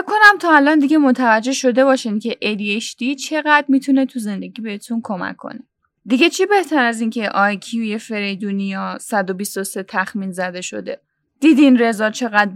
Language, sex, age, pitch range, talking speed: Persian, female, 10-29, 205-270 Hz, 155 wpm